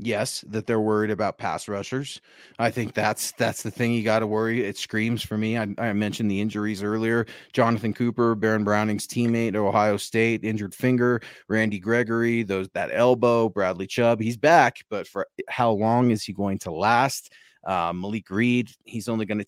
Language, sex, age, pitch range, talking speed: English, male, 30-49, 105-125 Hz, 190 wpm